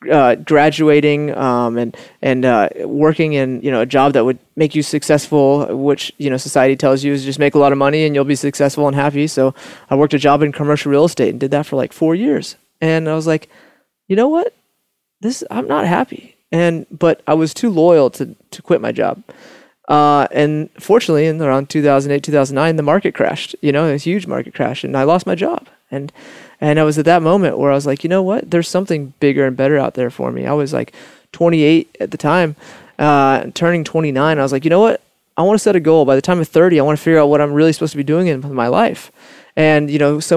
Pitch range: 135-160 Hz